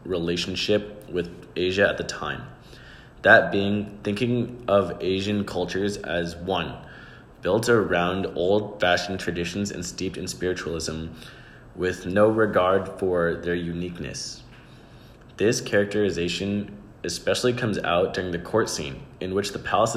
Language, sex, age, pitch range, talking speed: English, male, 20-39, 90-105 Hz, 125 wpm